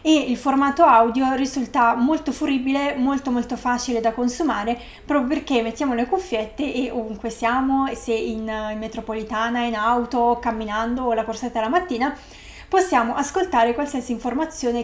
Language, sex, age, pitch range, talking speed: Italian, female, 20-39, 235-275 Hz, 140 wpm